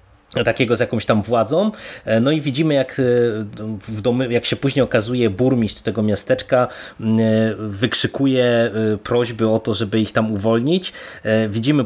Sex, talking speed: male, 125 wpm